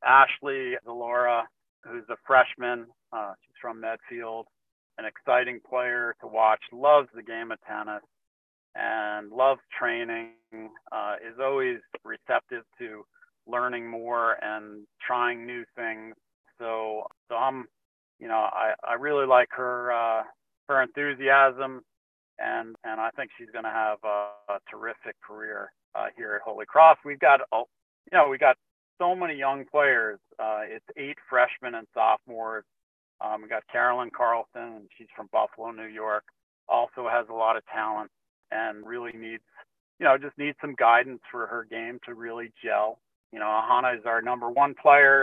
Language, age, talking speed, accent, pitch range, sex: English, 40-59, 160 wpm, American, 115-135 Hz, male